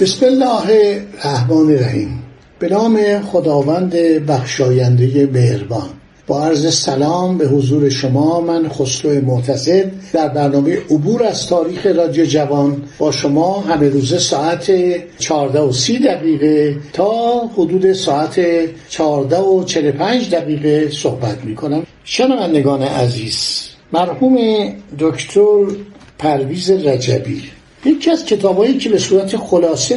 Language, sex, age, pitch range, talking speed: Persian, male, 60-79, 145-200 Hz, 105 wpm